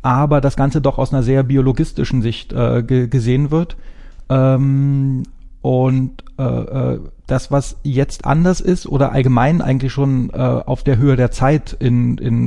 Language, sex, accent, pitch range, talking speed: German, male, German, 125-140 Hz, 160 wpm